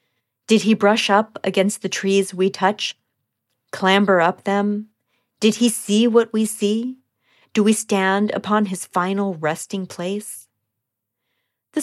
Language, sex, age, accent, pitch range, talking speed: English, female, 40-59, American, 170-215 Hz, 135 wpm